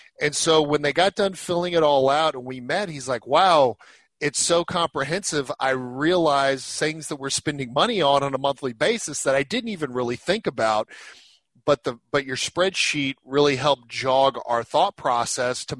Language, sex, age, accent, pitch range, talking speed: English, male, 40-59, American, 130-170 Hz, 190 wpm